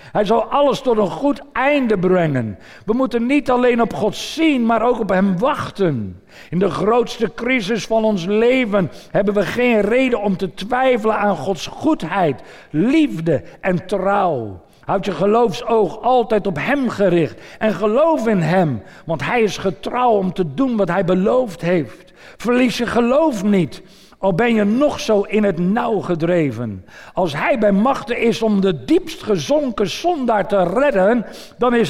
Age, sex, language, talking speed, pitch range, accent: 50-69, male, Dutch, 165 wpm, 190-245 Hz, Dutch